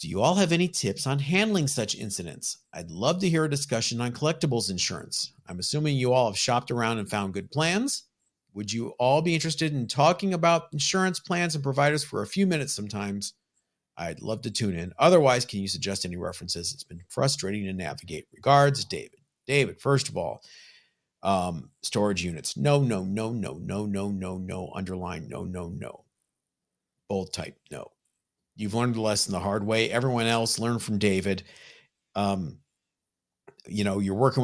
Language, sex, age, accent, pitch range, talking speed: English, male, 50-69, American, 100-125 Hz, 180 wpm